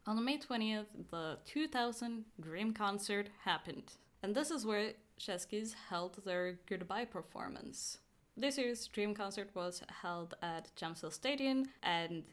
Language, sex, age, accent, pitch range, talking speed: English, female, 10-29, Norwegian, 175-225 Hz, 130 wpm